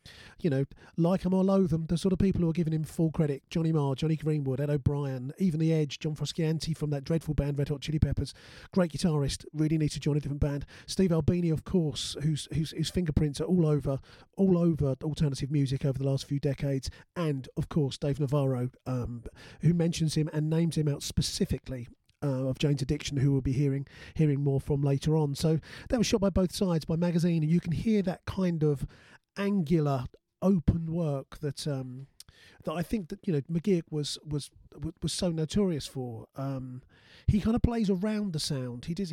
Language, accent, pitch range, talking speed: English, British, 140-170 Hz, 210 wpm